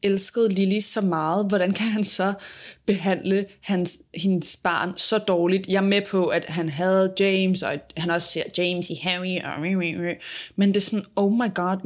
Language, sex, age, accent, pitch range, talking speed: Danish, female, 20-39, native, 175-205 Hz, 185 wpm